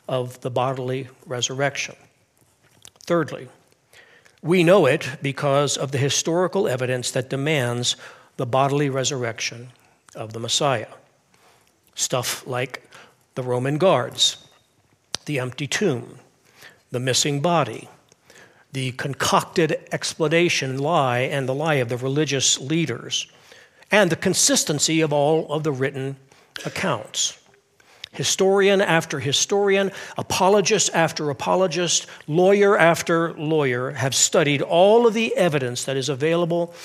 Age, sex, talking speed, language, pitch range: 60-79, male, 115 wpm, English, 135-175 Hz